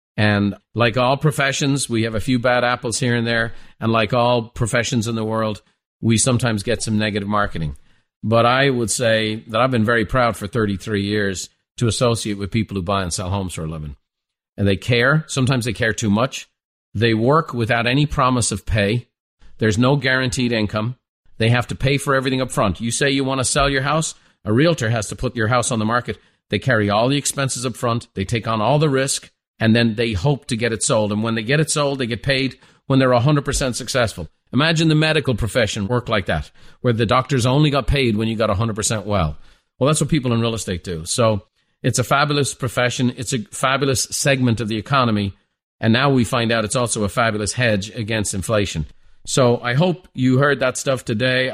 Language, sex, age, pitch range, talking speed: English, male, 50-69, 110-130 Hz, 220 wpm